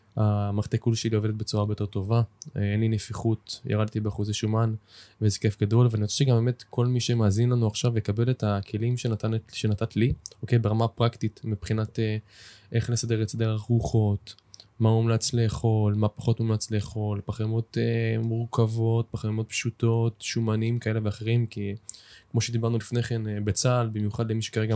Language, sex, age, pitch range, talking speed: Hebrew, male, 20-39, 110-120 Hz, 155 wpm